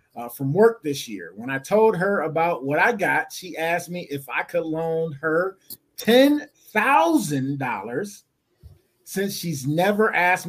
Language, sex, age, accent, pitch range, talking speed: English, male, 30-49, American, 150-210 Hz, 150 wpm